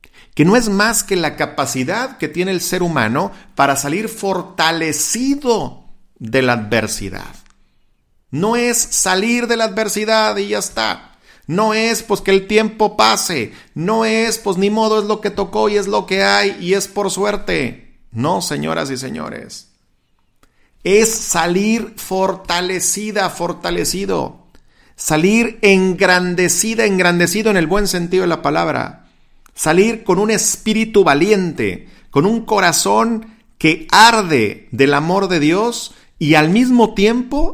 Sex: male